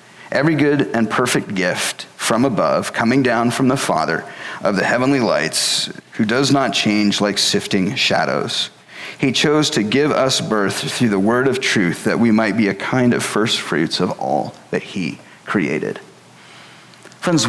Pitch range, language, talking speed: 110-140 Hz, English, 170 wpm